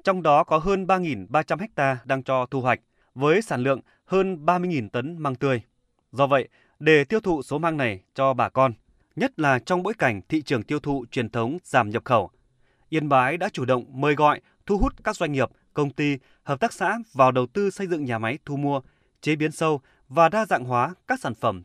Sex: male